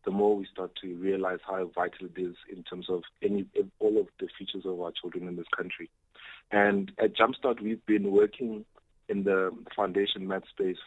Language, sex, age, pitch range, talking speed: English, male, 30-49, 95-110 Hz, 190 wpm